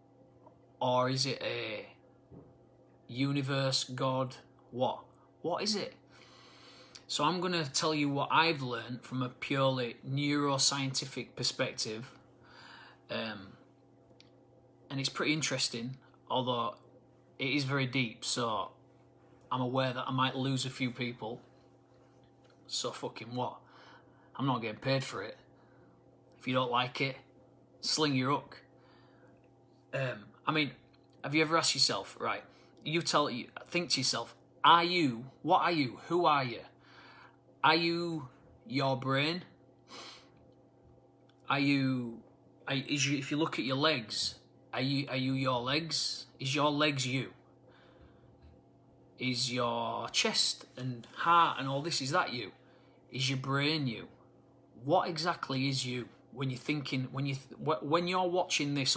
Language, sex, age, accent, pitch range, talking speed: English, male, 30-49, British, 130-140 Hz, 140 wpm